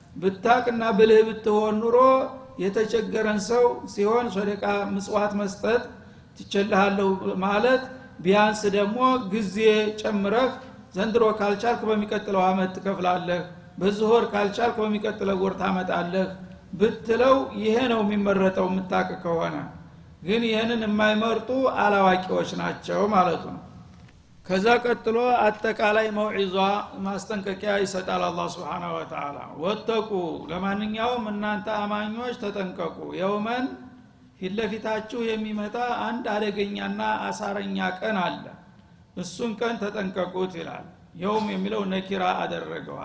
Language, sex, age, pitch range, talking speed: Amharic, male, 60-79, 190-220 Hz, 100 wpm